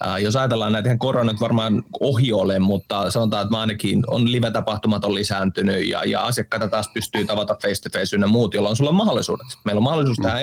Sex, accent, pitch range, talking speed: male, native, 115-140 Hz, 175 wpm